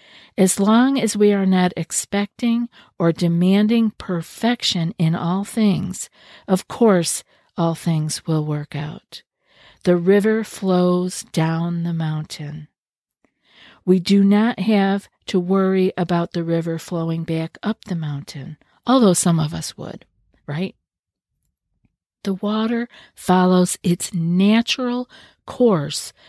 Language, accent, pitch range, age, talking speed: English, American, 170-205 Hz, 50-69, 120 wpm